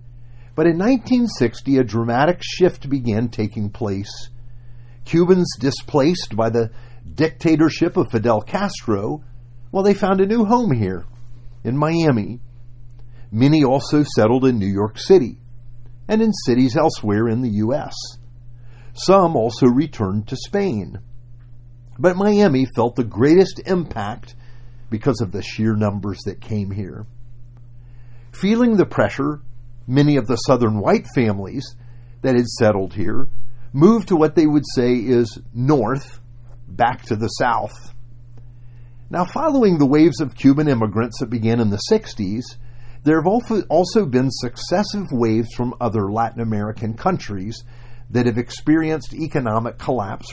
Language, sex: English, male